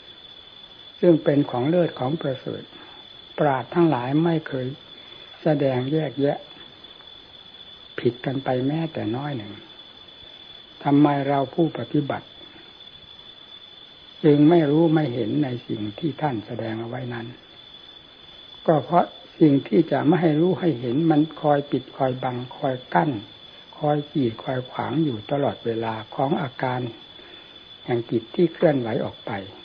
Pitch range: 125-155 Hz